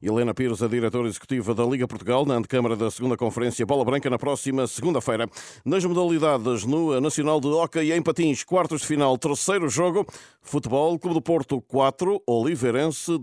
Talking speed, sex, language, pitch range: 170 wpm, male, Portuguese, 115-150 Hz